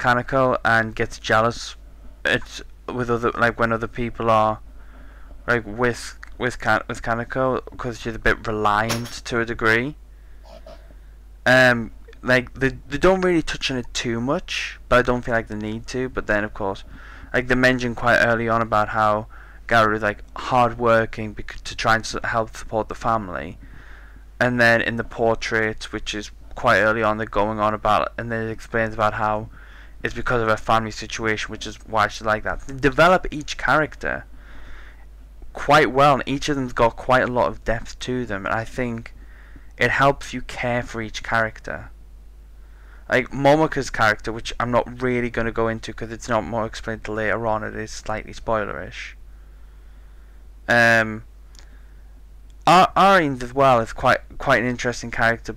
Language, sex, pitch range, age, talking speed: English, male, 105-120 Hz, 10-29, 175 wpm